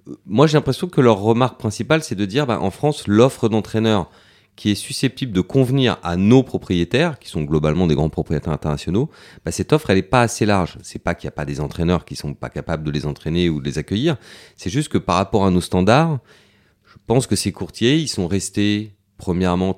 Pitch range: 85-115 Hz